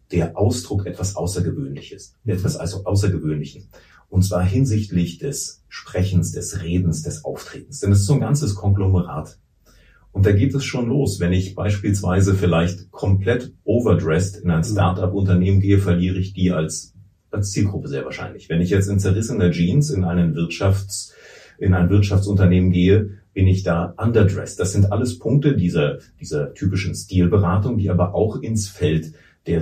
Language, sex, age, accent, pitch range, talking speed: German, male, 30-49, German, 90-105 Hz, 160 wpm